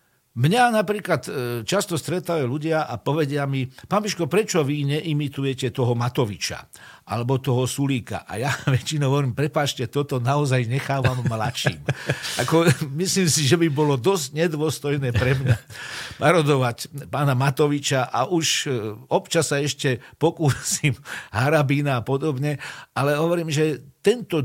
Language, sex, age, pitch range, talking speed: Slovak, male, 50-69, 125-155 Hz, 125 wpm